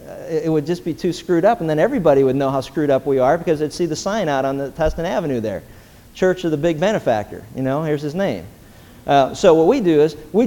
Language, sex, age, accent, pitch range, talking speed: English, male, 40-59, American, 140-195 Hz, 260 wpm